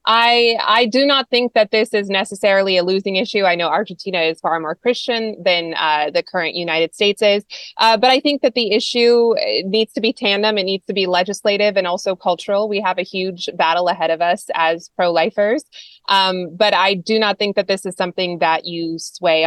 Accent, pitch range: American, 175-220 Hz